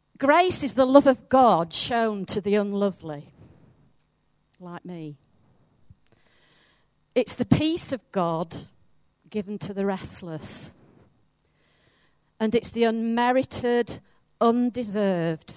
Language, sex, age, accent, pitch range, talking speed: English, female, 50-69, British, 160-235 Hz, 100 wpm